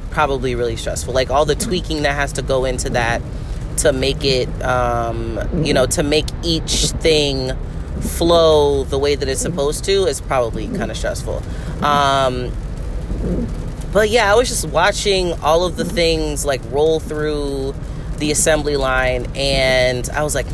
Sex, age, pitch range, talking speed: female, 30-49, 125-160 Hz, 165 wpm